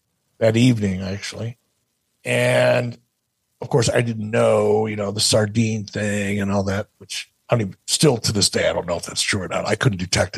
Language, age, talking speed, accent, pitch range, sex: English, 50-69, 200 wpm, American, 110-155 Hz, male